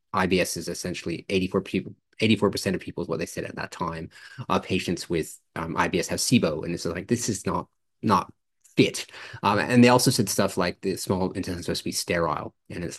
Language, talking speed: English, 225 wpm